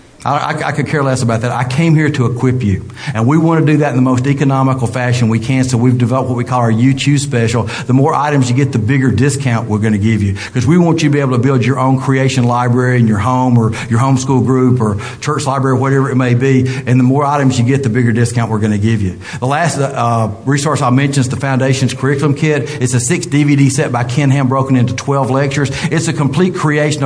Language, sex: English, male